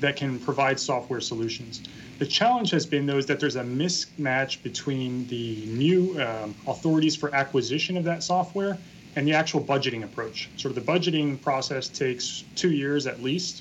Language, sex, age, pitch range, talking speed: English, male, 30-49, 130-155 Hz, 175 wpm